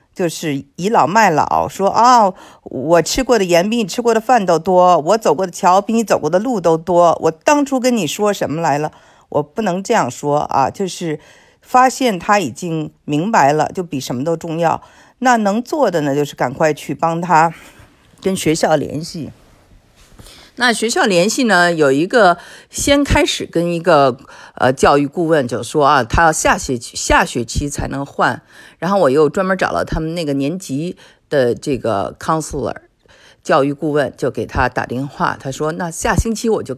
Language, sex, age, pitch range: Chinese, female, 50-69, 150-215 Hz